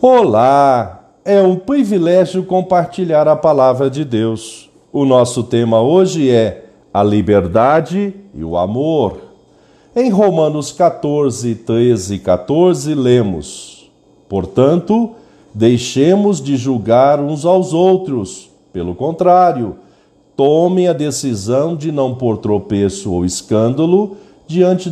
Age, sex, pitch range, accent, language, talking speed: 50-69, male, 120-185 Hz, Brazilian, Portuguese, 110 wpm